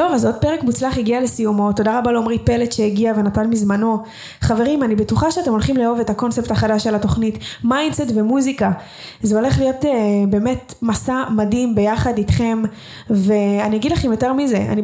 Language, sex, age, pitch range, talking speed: Hebrew, female, 20-39, 215-240 Hz, 165 wpm